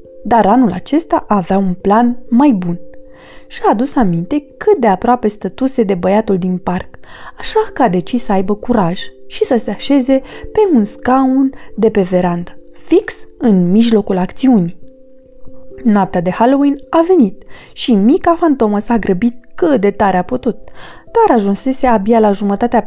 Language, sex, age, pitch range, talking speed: Romanian, female, 20-39, 190-265 Hz, 160 wpm